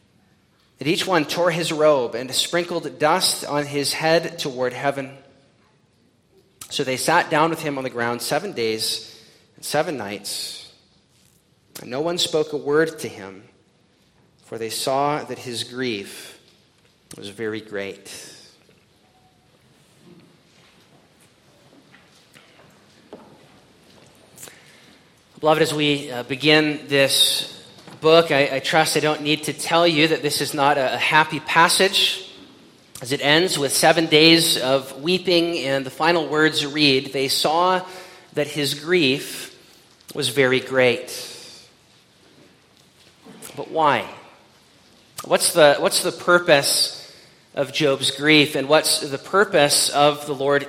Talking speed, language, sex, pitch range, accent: 125 wpm, English, male, 135-165 Hz, American